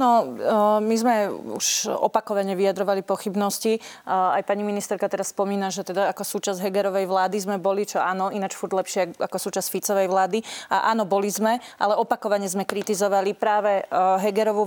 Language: Slovak